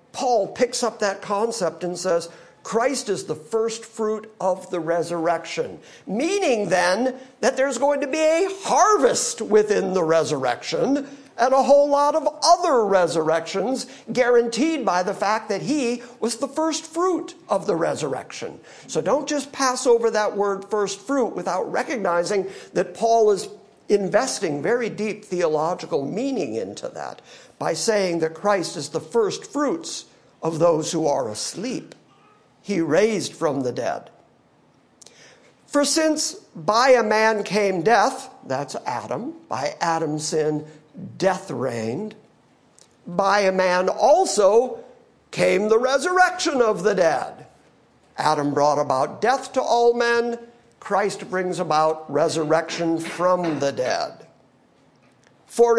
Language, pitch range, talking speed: English, 175-260 Hz, 135 wpm